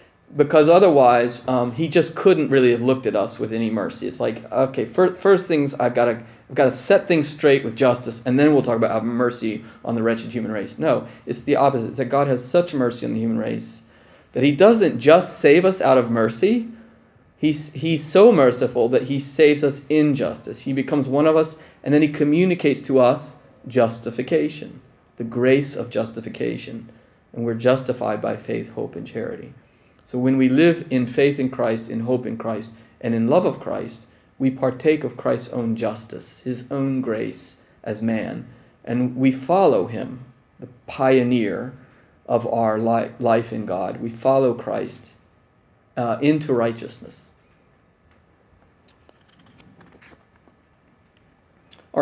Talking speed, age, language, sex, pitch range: 165 wpm, 30-49, English, male, 115-150 Hz